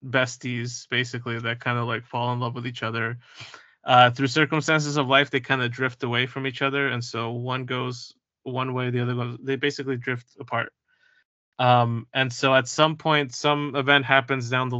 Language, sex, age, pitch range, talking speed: English, male, 20-39, 120-140 Hz, 200 wpm